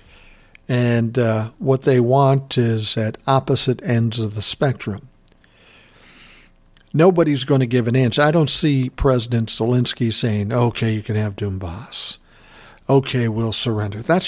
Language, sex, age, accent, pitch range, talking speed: English, male, 60-79, American, 115-135 Hz, 140 wpm